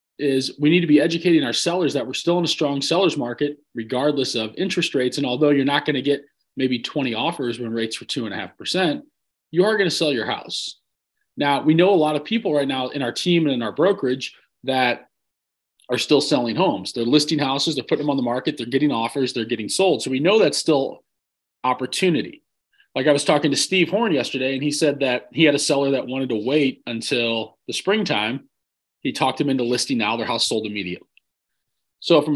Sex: male